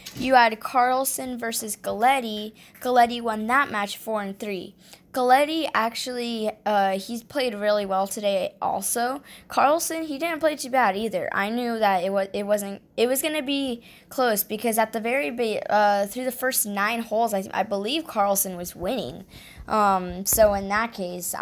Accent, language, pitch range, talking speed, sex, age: American, English, 200-245 Hz, 175 wpm, female, 10-29